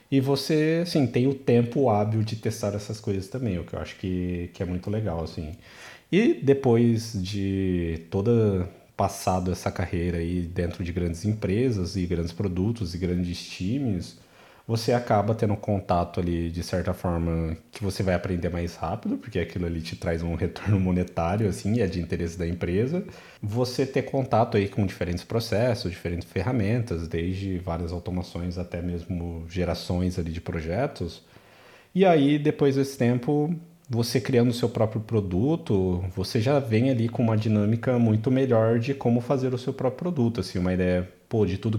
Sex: male